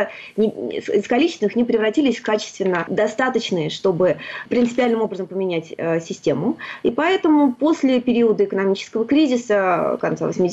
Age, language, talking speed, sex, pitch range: 20-39, Russian, 110 wpm, female, 195-255 Hz